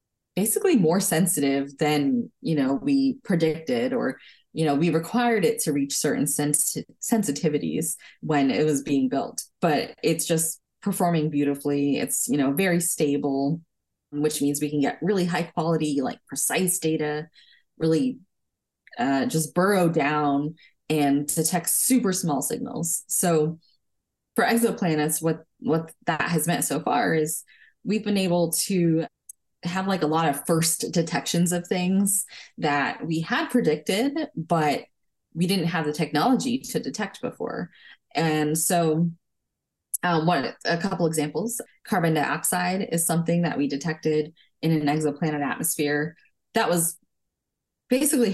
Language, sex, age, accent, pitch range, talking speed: English, female, 20-39, American, 150-190 Hz, 140 wpm